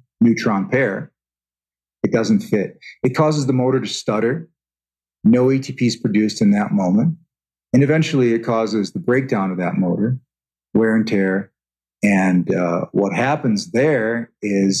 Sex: male